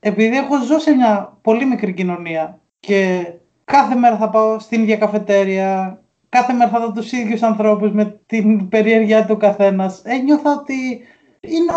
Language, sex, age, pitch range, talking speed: Greek, male, 20-39, 190-250 Hz, 165 wpm